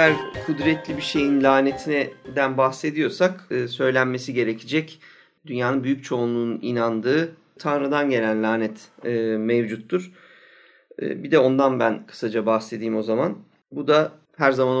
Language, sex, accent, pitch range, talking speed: Turkish, male, native, 120-155 Hz, 125 wpm